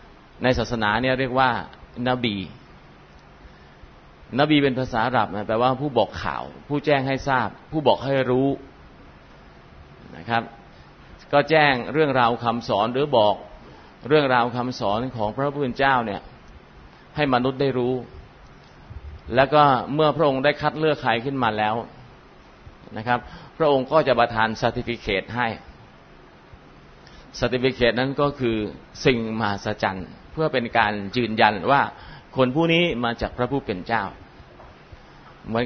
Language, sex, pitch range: Thai, male, 105-130 Hz